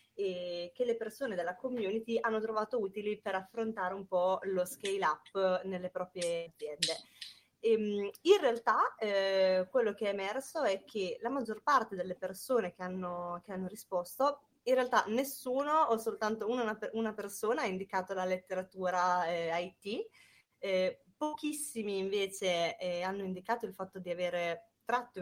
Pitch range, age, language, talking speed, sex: 180-225 Hz, 20-39, Italian, 145 wpm, female